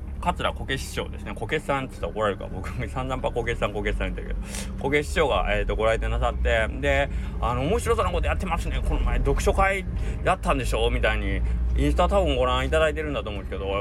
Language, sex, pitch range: Japanese, male, 70-105 Hz